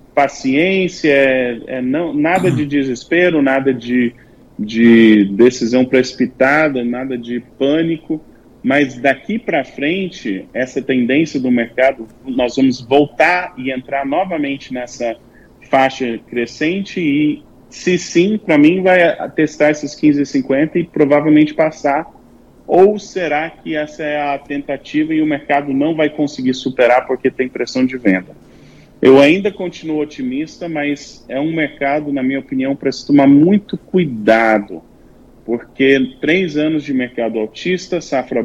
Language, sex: Portuguese, male